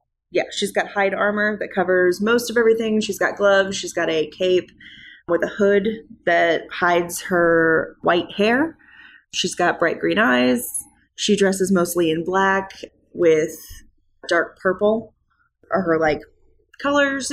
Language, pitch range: English, 165-205 Hz